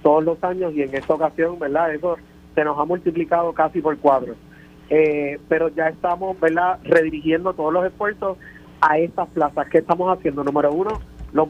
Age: 30-49